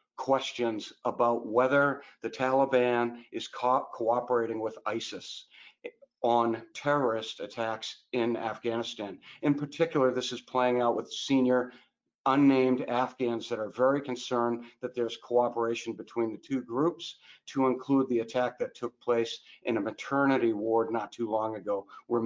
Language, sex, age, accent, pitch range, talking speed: English, male, 50-69, American, 115-130 Hz, 135 wpm